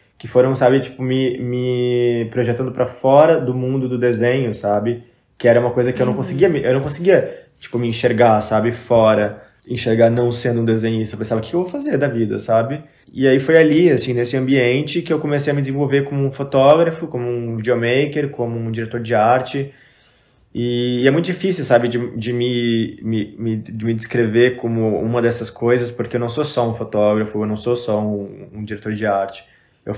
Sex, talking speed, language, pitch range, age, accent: male, 200 wpm, Portuguese, 115-130 Hz, 20-39, Brazilian